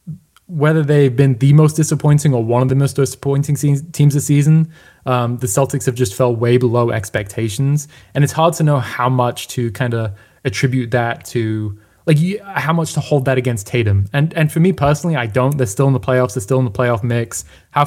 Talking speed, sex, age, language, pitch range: 215 wpm, male, 20-39, English, 115-140 Hz